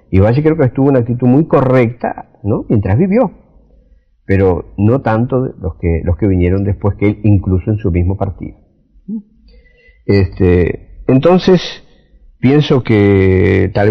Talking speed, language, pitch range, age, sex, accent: 145 wpm, Spanish, 90-120 Hz, 50-69, male, Argentinian